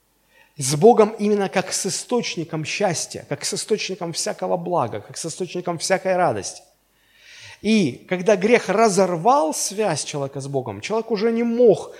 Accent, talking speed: native, 145 wpm